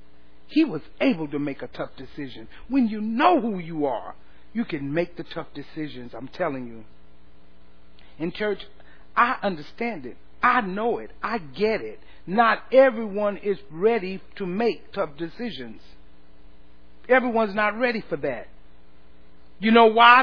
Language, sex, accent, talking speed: English, male, American, 150 wpm